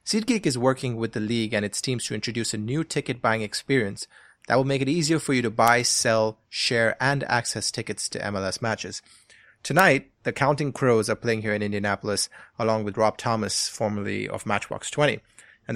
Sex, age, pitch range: male, 30-49, 110-135 Hz